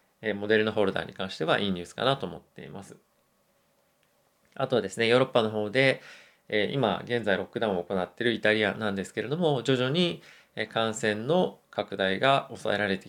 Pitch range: 105-130 Hz